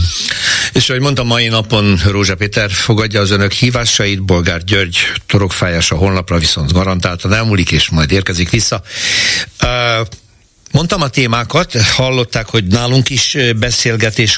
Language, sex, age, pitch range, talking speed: Hungarian, male, 60-79, 95-115 Hz, 130 wpm